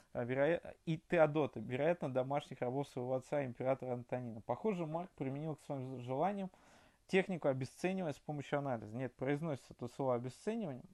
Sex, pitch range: male, 130-165 Hz